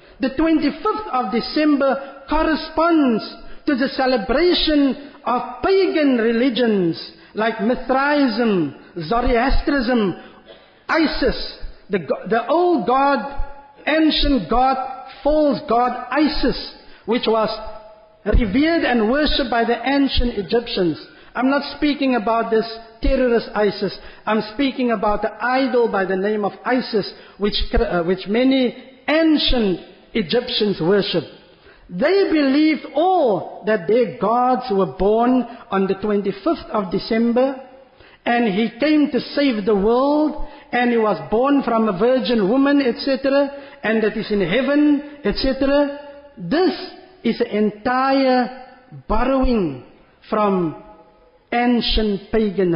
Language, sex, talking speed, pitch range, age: English, male, 115 wpm, 215-280 Hz, 50-69